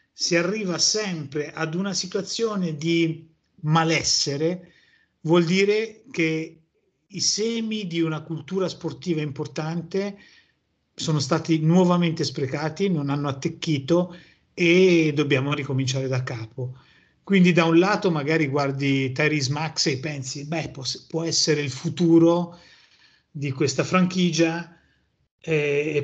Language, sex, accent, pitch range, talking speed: Italian, male, native, 140-170 Hz, 115 wpm